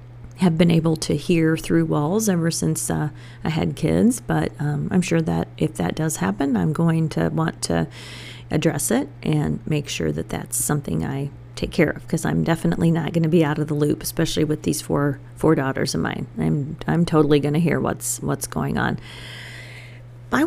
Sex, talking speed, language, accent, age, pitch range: female, 200 wpm, English, American, 40-59, 120-170 Hz